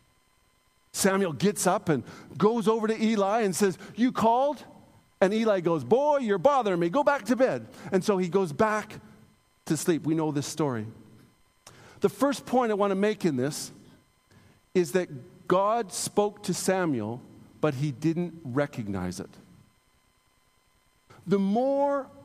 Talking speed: 150 wpm